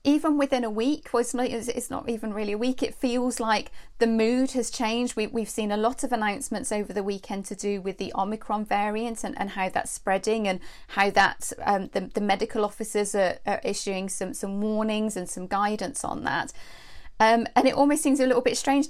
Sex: female